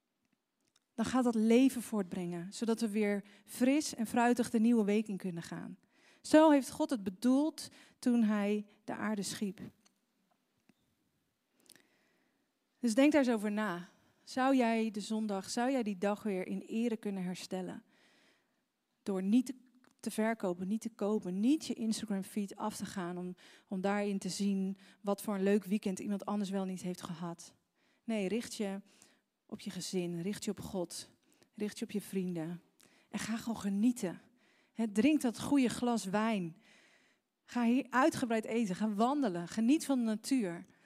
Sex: female